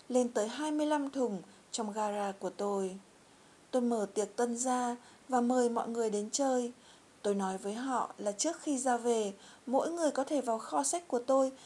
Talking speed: 190 wpm